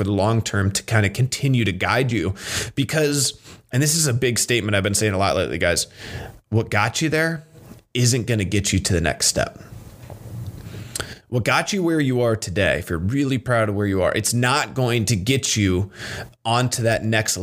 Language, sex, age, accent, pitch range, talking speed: English, male, 20-39, American, 105-125 Hz, 210 wpm